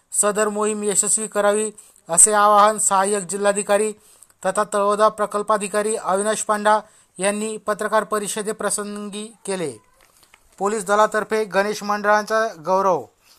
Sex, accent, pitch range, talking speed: male, native, 200-215 Hz, 105 wpm